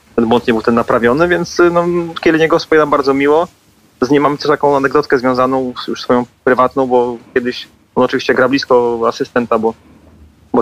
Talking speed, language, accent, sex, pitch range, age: 180 wpm, Polish, native, male, 120-140 Hz, 30-49